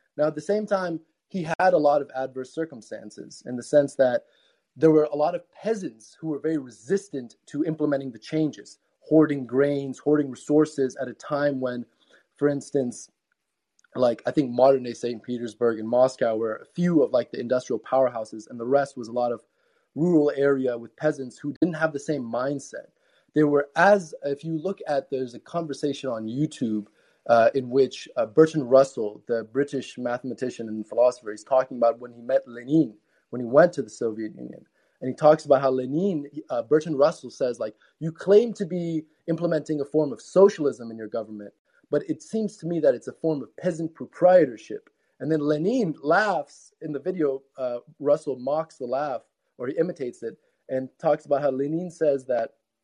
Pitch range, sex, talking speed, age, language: 125-160 Hz, male, 190 wpm, 20-39, English